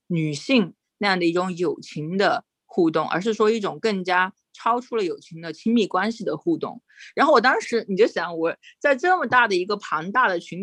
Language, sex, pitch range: Chinese, female, 165-225 Hz